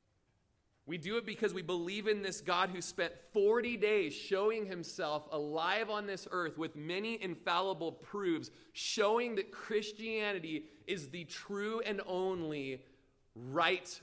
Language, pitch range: English, 130-185 Hz